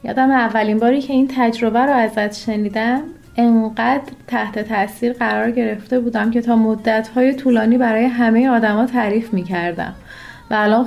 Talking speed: 145 wpm